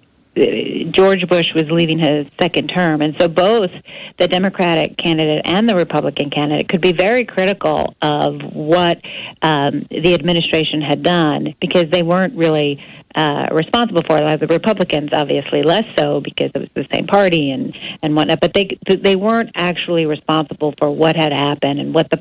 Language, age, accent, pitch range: English, 40-59, American, 150-180 Hz